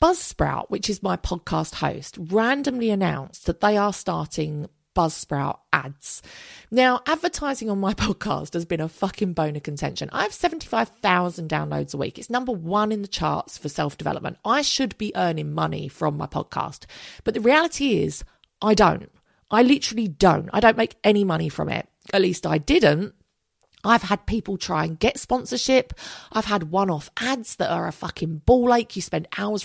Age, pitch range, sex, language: 40-59, 165-230 Hz, female, English